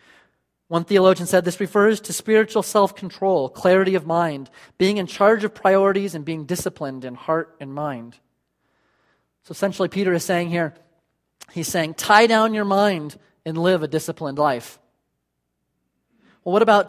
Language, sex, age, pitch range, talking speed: English, male, 30-49, 155-195 Hz, 155 wpm